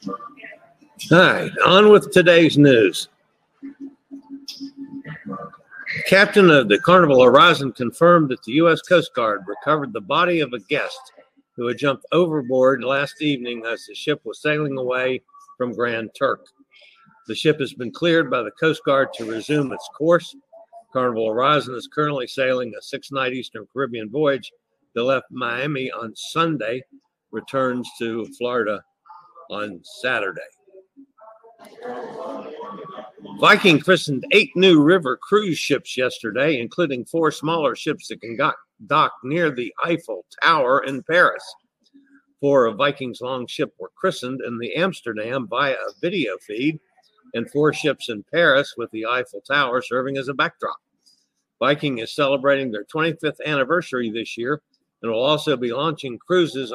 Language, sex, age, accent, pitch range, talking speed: English, male, 60-79, American, 130-205 Hz, 140 wpm